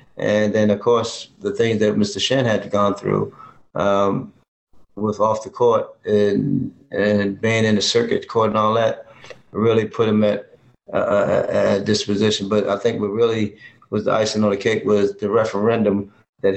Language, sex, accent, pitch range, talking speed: English, male, American, 100-115 Hz, 180 wpm